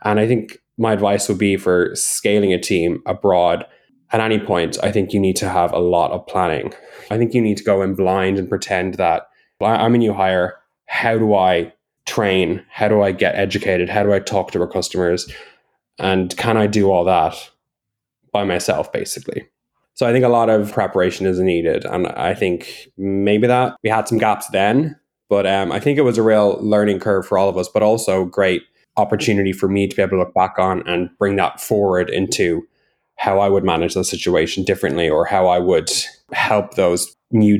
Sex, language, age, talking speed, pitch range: male, English, 10-29, 205 wpm, 95-105 Hz